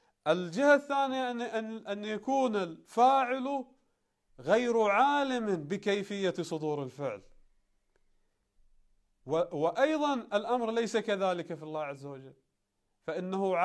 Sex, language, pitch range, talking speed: male, Arabic, 180-245 Hz, 85 wpm